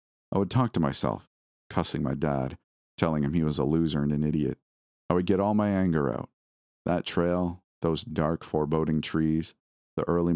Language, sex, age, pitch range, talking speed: English, male, 40-59, 70-90 Hz, 185 wpm